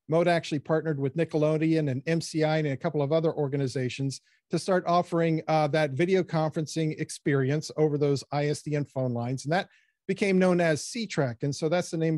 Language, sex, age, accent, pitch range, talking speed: English, male, 50-69, American, 145-170 Hz, 185 wpm